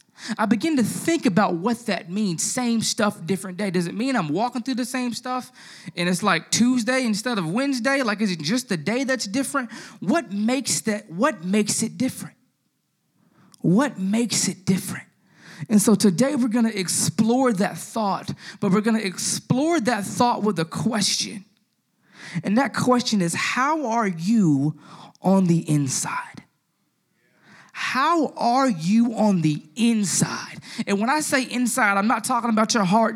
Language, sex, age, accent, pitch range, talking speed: English, male, 20-39, American, 195-245 Hz, 165 wpm